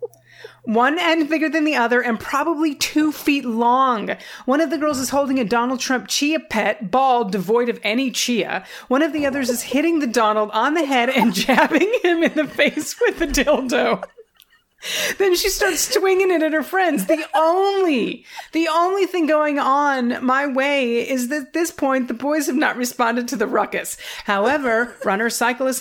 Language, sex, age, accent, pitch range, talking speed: English, female, 30-49, American, 215-300 Hz, 185 wpm